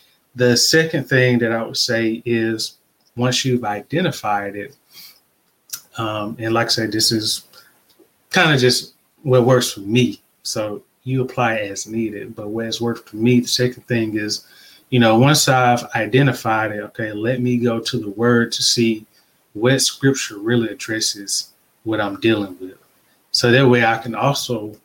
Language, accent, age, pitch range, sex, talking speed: English, American, 20-39, 110-125 Hz, male, 170 wpm